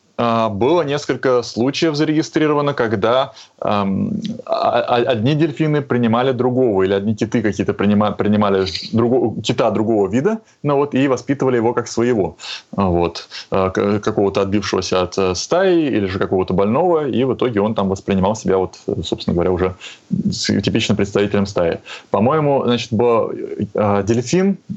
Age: 20-39